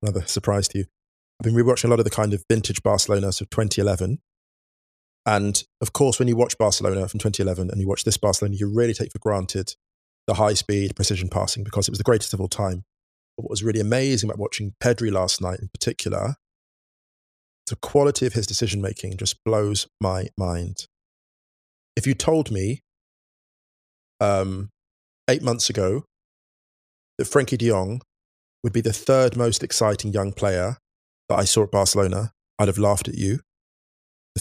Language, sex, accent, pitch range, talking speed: English, male, British, 95-115 Hz, 175 wpm